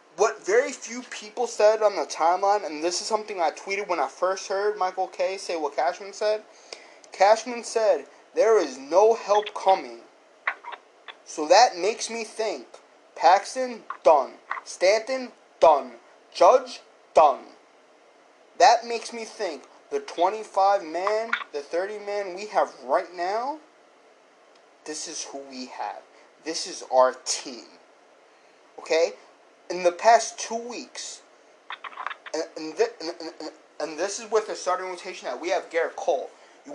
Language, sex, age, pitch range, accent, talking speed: English, male, 20-39, 160-225 Hz, American, 145 wpm